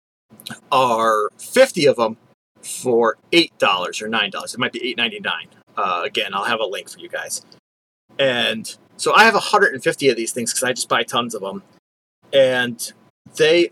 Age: 30-49